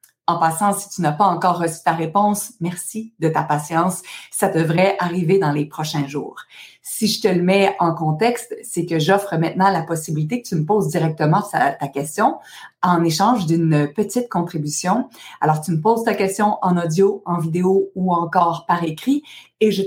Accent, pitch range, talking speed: Canadian, 165-210 Hz, 185 wpm